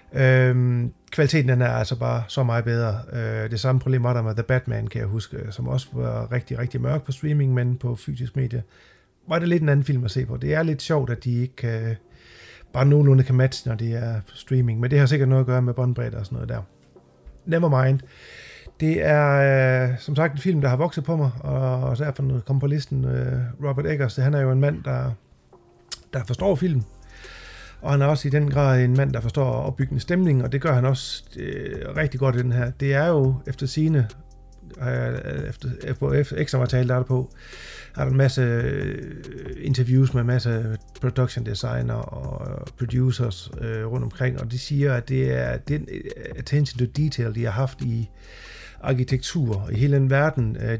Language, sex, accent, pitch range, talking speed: Danish, male, native, 120-140 Hz, 200 wpm